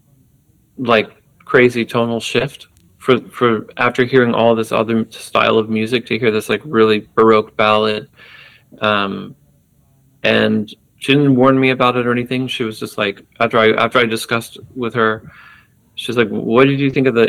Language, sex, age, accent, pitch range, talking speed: English, male, 30-49, American, 110-125 Hz, 175 wpm